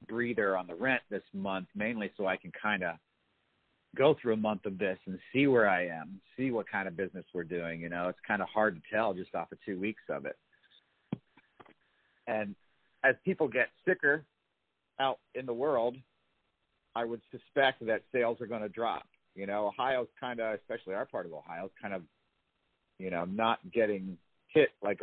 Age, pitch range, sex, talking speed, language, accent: 50-69, 95-115 Hz, male, 195 wpm, English, American